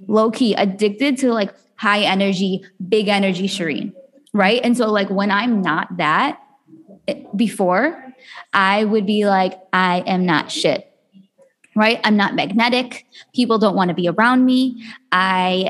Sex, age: female, 20-39